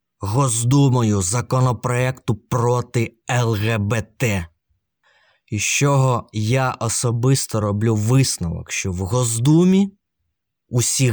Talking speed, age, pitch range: 75 wpm, 20-39, 100-140 Hz